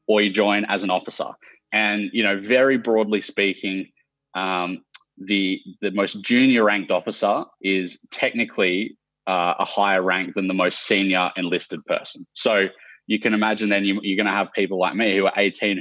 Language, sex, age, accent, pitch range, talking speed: English, male, 20-39, Australian, 90-105 Hz, 175 wpm